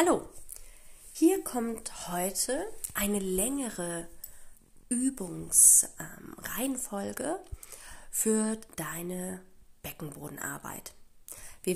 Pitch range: 170-245 Hz